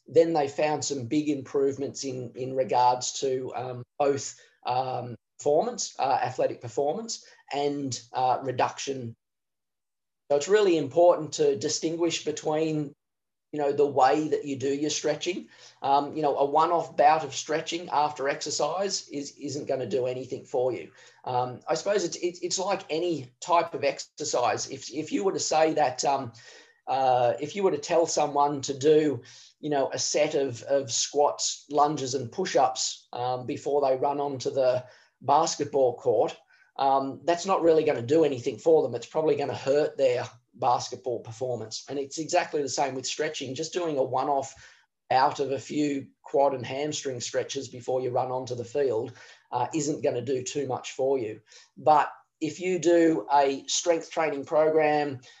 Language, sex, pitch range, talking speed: English, male, 130-160 Hz, 170 wpm